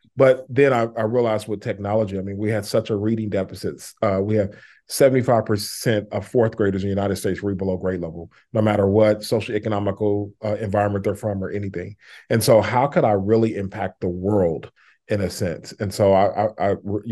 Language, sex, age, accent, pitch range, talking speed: English, male, 40-59, American, 100-110 Hz, 200 wpm